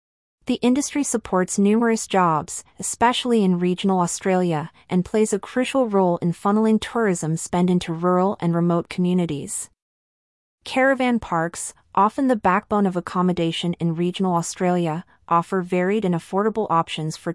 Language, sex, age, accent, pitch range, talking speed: English, female, 30-49, American, 170-210 Hz, 135 wpm